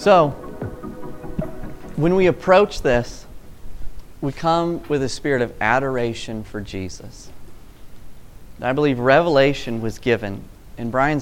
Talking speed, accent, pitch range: 110 wpm, American, 110-155 Hz